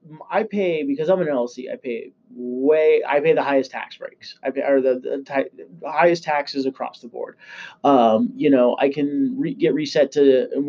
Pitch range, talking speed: 130-155 Hz, 200 wpm